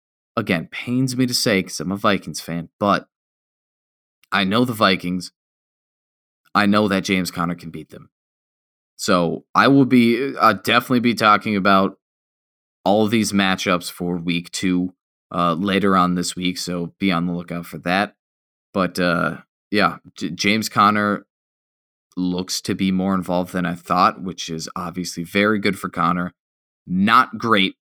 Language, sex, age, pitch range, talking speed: English, male, 20-39, 85-100 Hz, 155 wpm